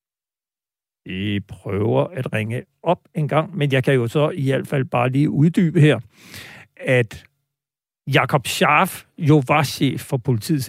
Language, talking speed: Danish, 150 wpm